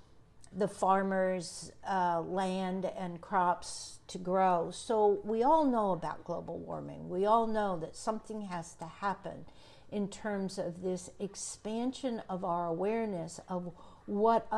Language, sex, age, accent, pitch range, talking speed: English, female, 60-79, American, 175-205 Hz, 135 wpm